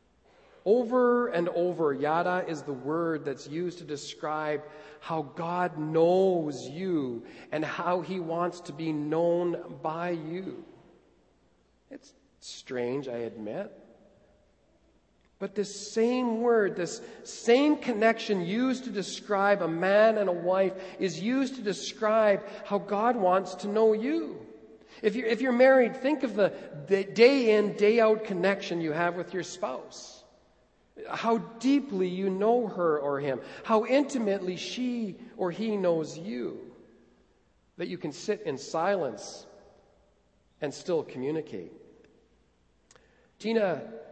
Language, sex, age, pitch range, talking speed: English, male, 40-59, 145-215 Hz, 125 wpm